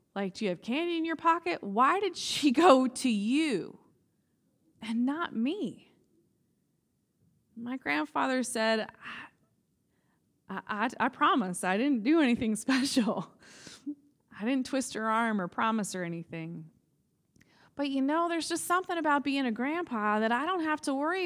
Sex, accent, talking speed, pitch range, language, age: female, American, 150 wpm, 200-285 Hz, English, 20-39